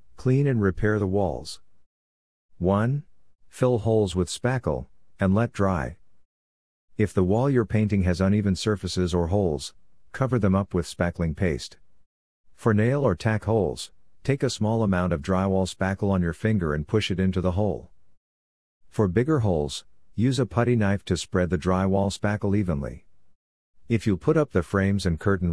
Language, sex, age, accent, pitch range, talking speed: English, male, 50-69, American, 85-105 Hz, 165 wpm